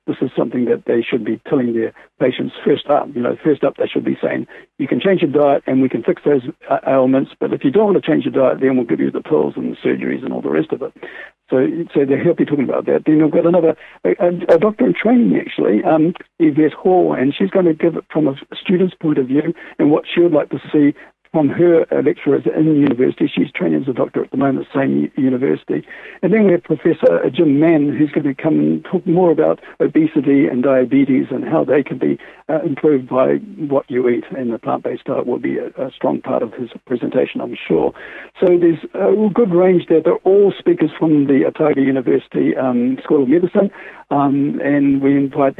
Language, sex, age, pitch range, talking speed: English, male, 60-79, 140-185 Hz, 235 wpm